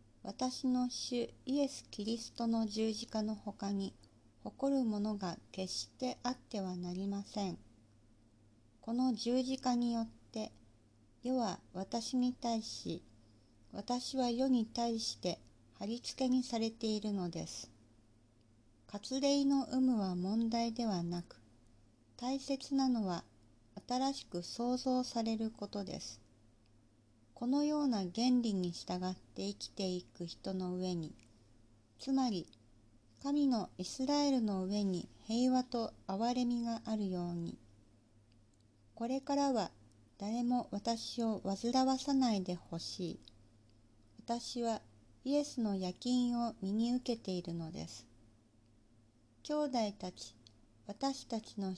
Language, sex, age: Japanese, female, 50-69